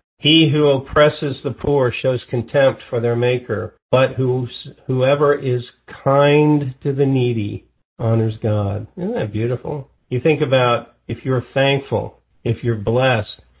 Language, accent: English, American